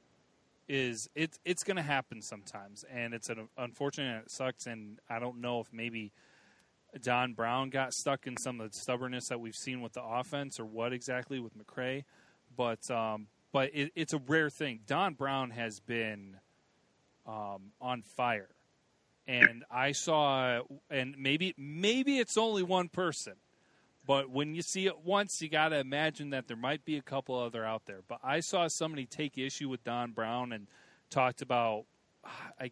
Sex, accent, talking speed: male, American, 175 wpm